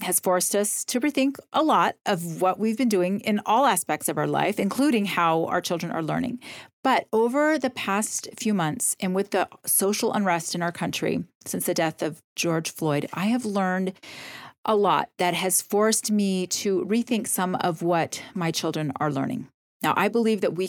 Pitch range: 175-225 Hz